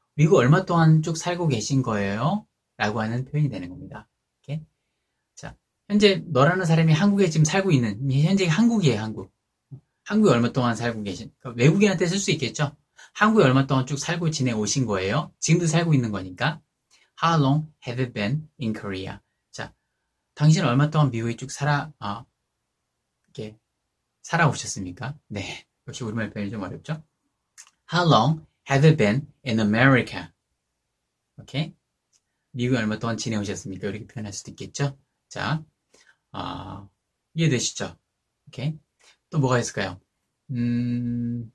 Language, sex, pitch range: Korean, male, 110-155 Hz